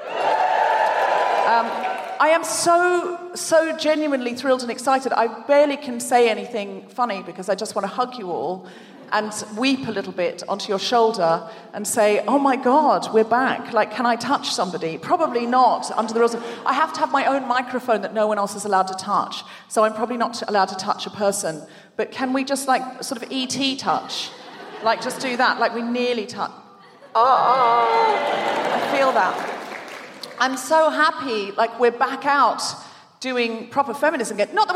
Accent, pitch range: British, 220-295 Hz